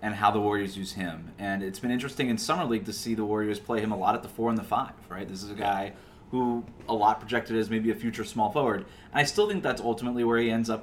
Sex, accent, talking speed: male, American, 285 wpm